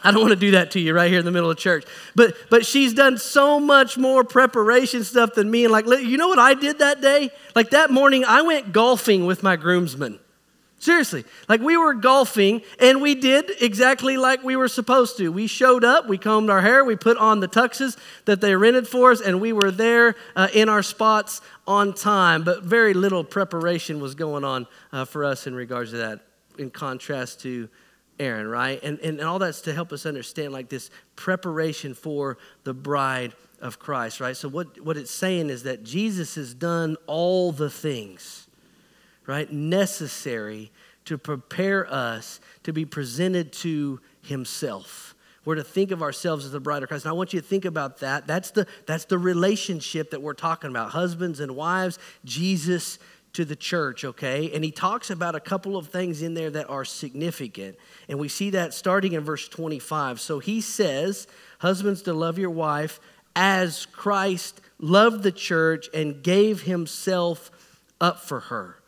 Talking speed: 190 wpm